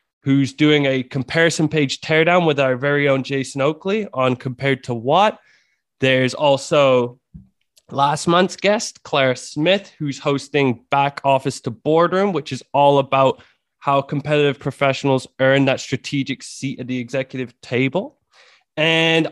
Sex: male